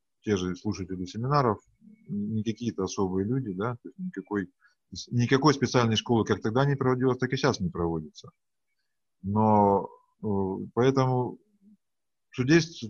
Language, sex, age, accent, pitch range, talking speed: Russian, male, 20-39, native, 95-135 Hz, 115 wpm